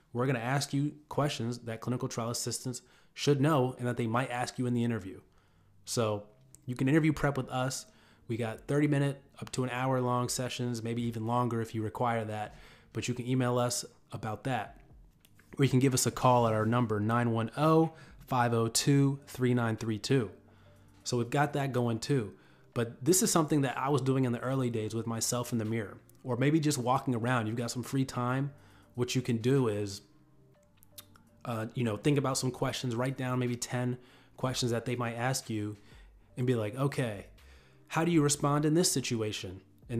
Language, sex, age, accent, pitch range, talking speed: English, male, 20-39, American, 110-135 Hz, 200 wpm